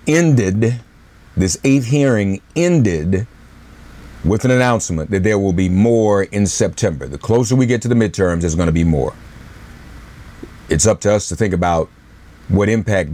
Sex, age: male, 50-69